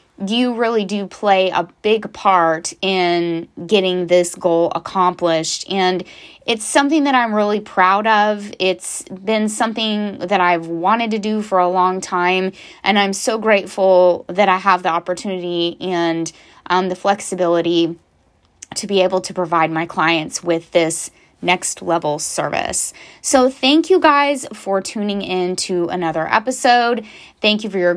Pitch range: 175-210 Hz